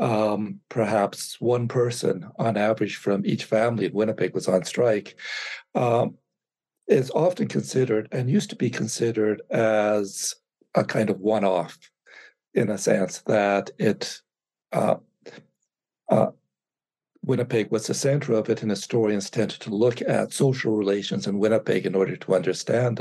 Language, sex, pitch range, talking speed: English, male, 105-120 Hz, 145 wpm